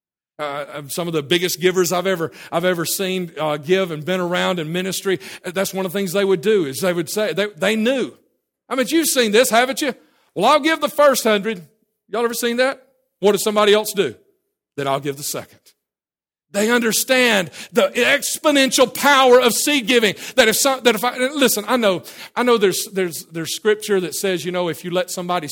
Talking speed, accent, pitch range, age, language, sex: 215 wpm, American, 170-230 Hz, 50-69, English, male